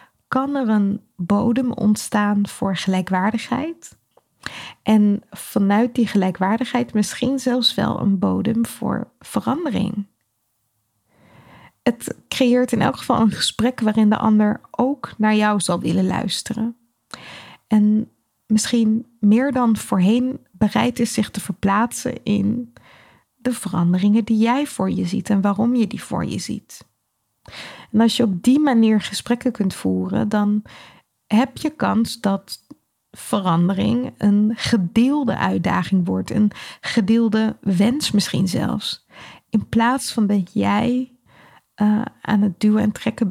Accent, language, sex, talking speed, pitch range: Dutch, Dutch, female, 130 wpm, 200-240 Hz